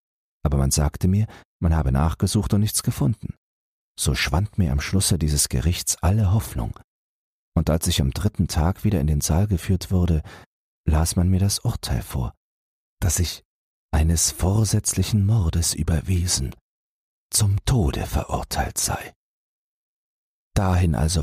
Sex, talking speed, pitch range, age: male, 140 wpm, 70-95 Hz, 40-59